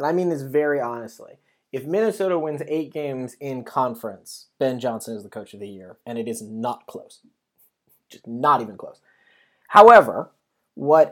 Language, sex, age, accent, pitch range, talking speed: English, male, 20-39, American, 125-165 Hz, 175 wpm